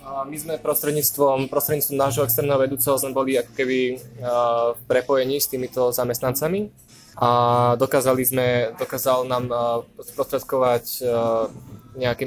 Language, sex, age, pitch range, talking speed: Slovak, male, 20-39, 120-140 Hz, 110 wpm